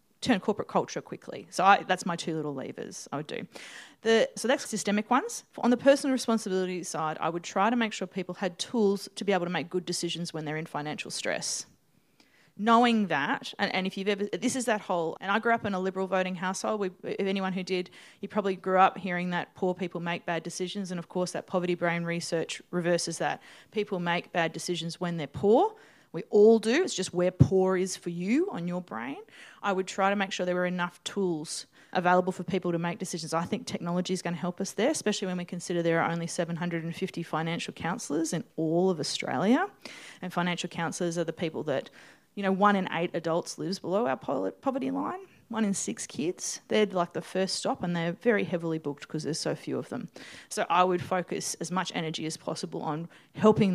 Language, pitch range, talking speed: English, 170-205 Hz, 220 wpm